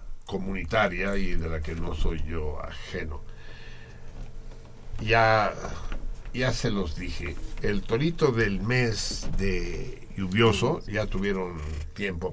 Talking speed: 110 wpm